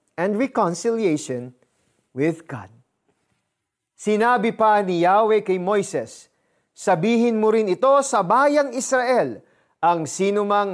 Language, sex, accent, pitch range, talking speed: Filipino, male, native, 180-255 Hz, 105 wpm